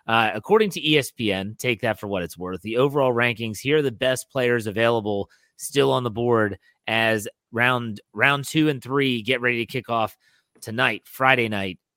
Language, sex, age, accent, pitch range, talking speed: English, male, 30-49, American, 110-135 Hz, 185 wpm